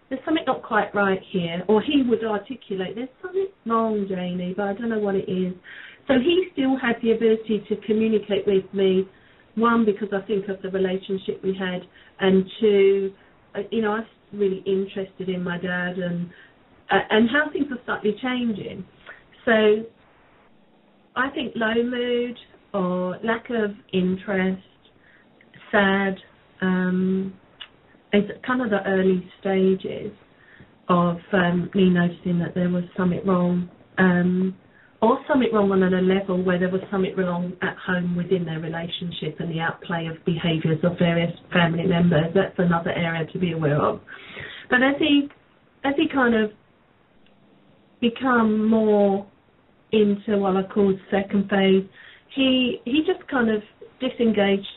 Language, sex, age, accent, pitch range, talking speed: English, female, 40-59, British, 185-225 Hz, 150 wpm